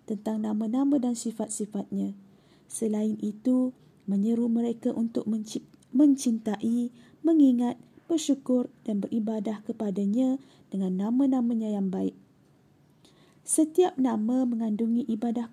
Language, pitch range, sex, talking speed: Malay, 215-260 Hz, female, 95 wpm